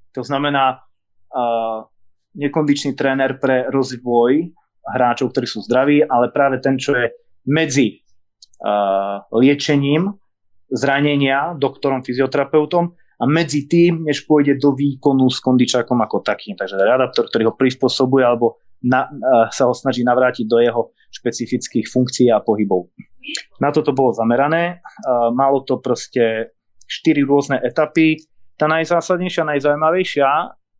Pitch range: 115-150 Hz